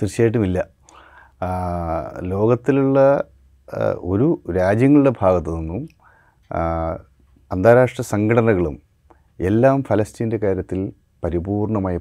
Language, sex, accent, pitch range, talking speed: Malayalam, male, native, 95-115 Hz, 60 wpm